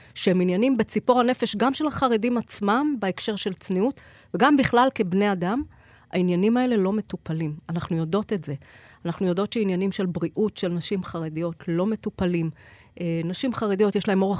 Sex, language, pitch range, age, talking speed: female, Hebrew, 180-225 Hz, 30-49, 160 wpm